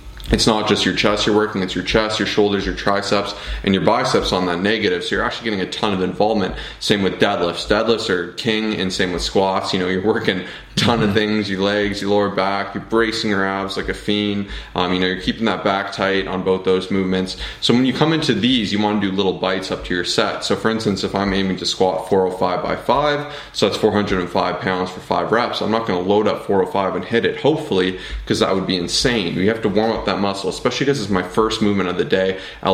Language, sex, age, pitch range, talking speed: English, male, 20-39, 95-105 Hz, 255 wpm